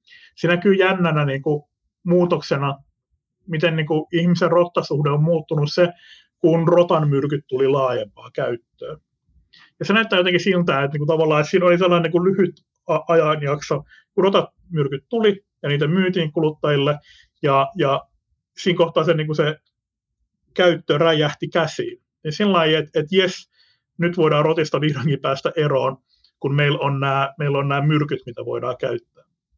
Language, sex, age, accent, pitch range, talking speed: Finnish, male, 30-49, native, 145-175 Hz, 155 wpm